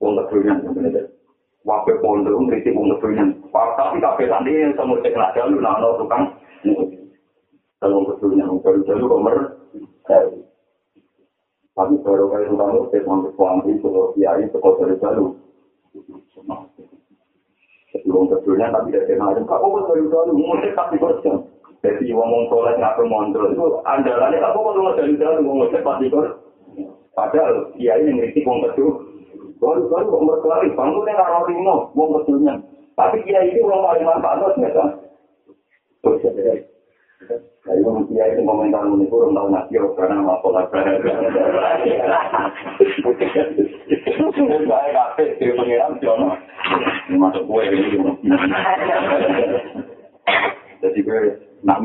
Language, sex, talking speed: Indonesian, male, 30 wpm